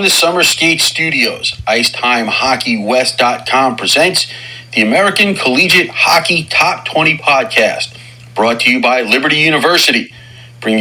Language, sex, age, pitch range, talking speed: English, male, 40-59, 115-160 Hz, 110 wpm